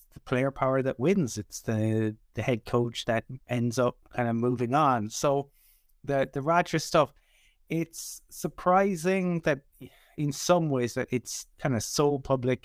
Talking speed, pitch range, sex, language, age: 155 wpm, 115-140 Hz, male, English, 20-39